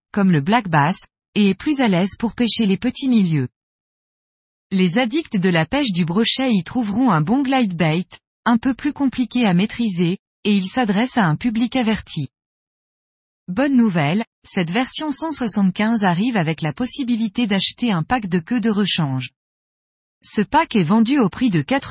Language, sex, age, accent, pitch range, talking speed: French, female, 20-39, French, 180-245 Hz, 175 wpm